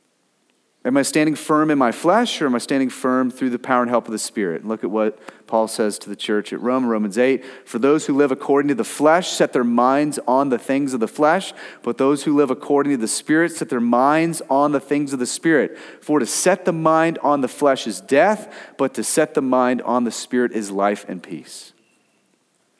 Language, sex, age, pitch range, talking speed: English, male, 30-49, 115-150 Hz, 230 wpm